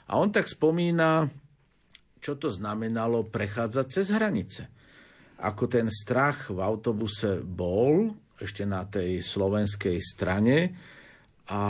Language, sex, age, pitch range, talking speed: Slovak, male, 50-69, 100-120 Hz, 115 wpm